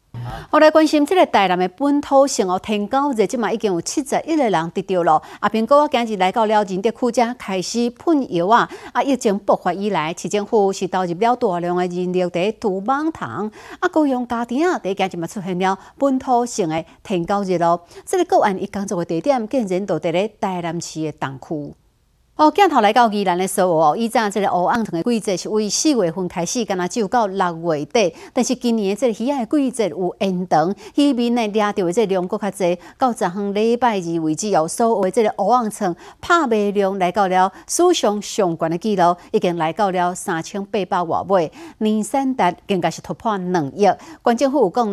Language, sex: Chinese, female